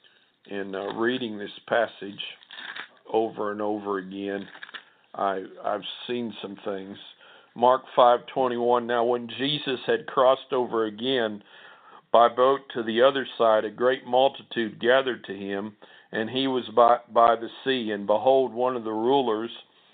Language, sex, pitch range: English, male, 110-130 Hz